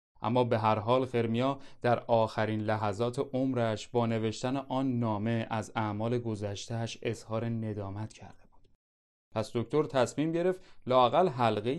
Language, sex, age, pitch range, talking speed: Persian, male, 30-49, 115-150 Hz, 125 wpm